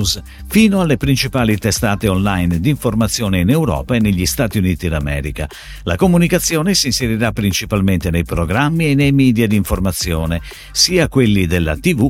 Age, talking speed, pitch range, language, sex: 50-69, 150 wpm, 90-145 Hz, Italian, male